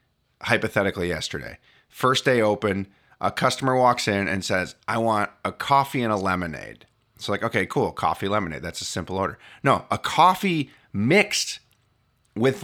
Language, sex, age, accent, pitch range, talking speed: English, male, 30-49, American, 100-140 Hz, 155 wpm